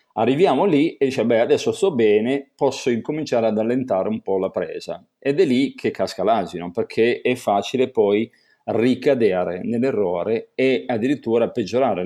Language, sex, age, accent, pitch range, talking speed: Italian, male, 40-59, native, 105-140 Hz, 155 wpm